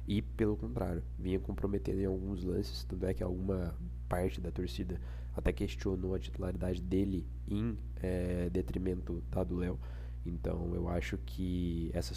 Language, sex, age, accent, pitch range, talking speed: Portuguese, male, 20-39, Brazilian, 65-95 Hz, 150 wpm